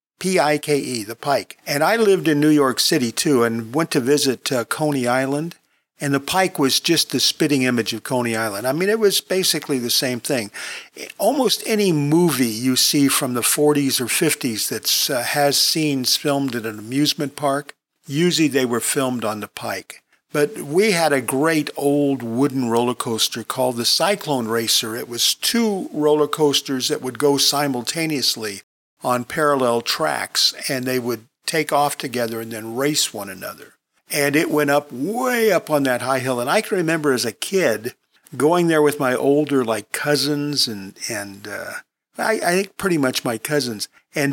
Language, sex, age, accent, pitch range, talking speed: English, male, 50-69, American, 125-150 Hz, 180 wpm